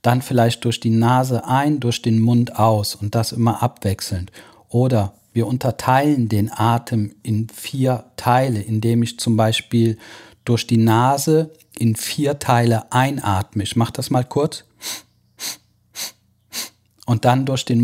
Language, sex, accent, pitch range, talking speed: German, male, German, 110-135 Hz, 140 wpm